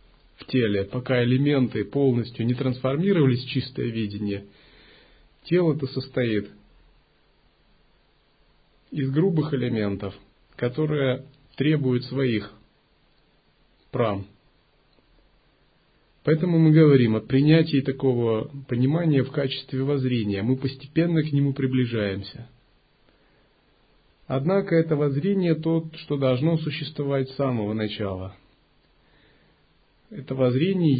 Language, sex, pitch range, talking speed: Russian, male, 110-155 Hz, 90 wpm